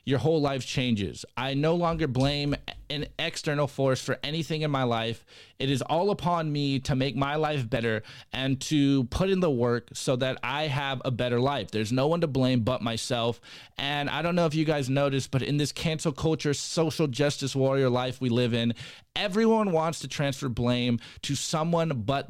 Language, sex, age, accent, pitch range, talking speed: English, male, 20-39, American, 125-155 Hz, 200 wpm